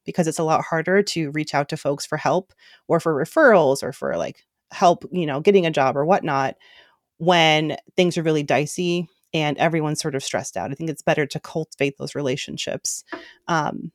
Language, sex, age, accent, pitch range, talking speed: English, female, 30-49, American, 155-190 Hz, 200 wpm